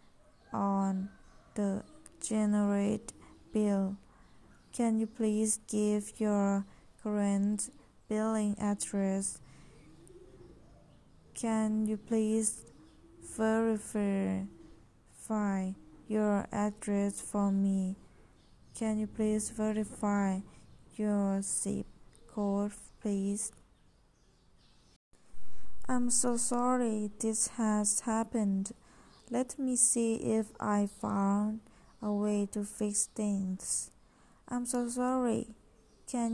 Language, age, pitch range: Thai, 20-39, 200-220 Hz